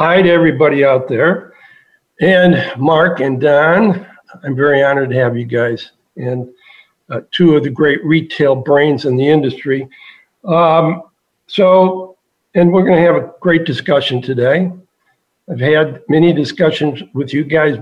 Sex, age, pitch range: male, 60-79, 140-175 Hz